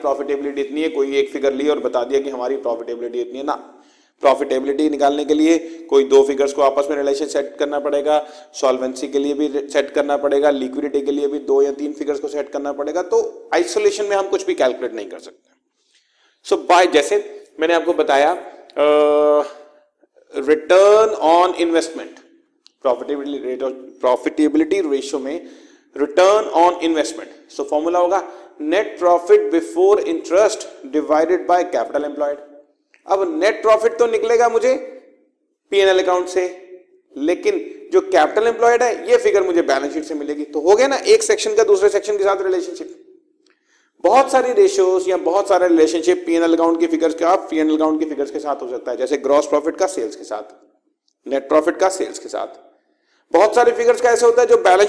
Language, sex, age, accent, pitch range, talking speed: Hindi, male, 30-49, native, 145-245 Hz, 145 wpm